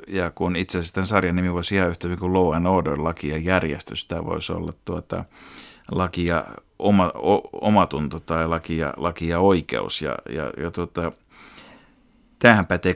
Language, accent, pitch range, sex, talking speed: Finnish, native, 85-105 Hz, male, 165 wpm